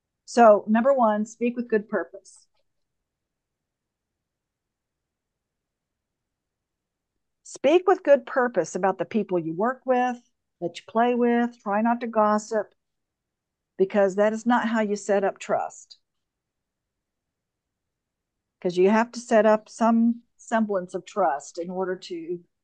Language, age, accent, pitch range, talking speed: English, 50-69, American, 180-240 Hz, 125 wpm